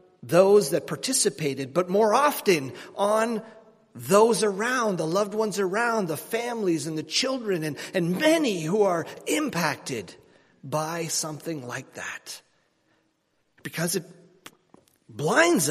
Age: 40-59